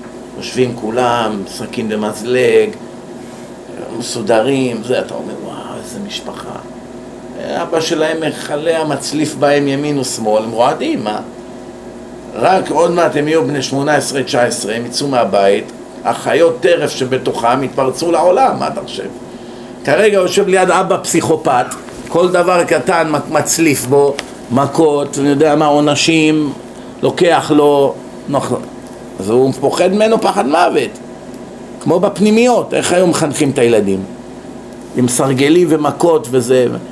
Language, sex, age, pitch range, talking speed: Hebrew, male, 50-69, 125-165 Hz, 125 wpm